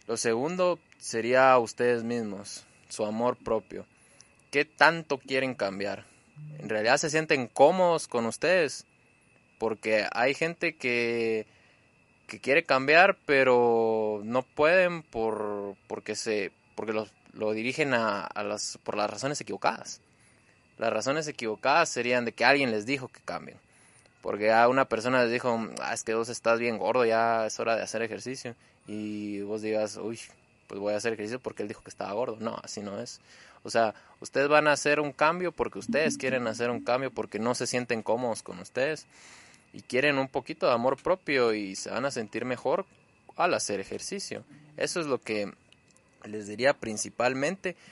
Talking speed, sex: 170 wpm, male